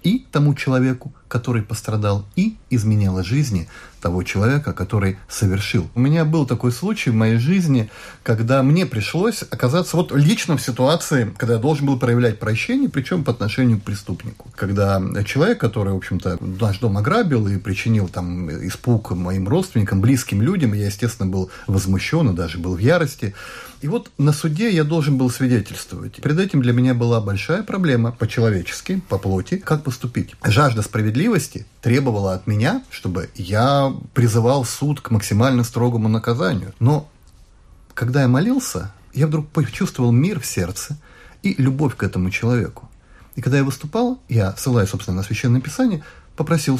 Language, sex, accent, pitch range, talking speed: Russian, male, native, 100-145 Hz, 160 wpm